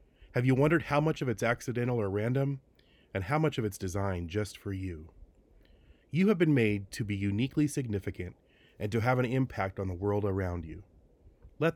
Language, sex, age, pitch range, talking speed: English, male, 30-49, 95-125 Hz, 195 wpm